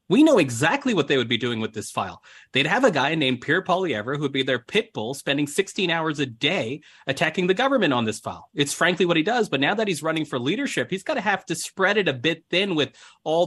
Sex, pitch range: male, 135-185 Hz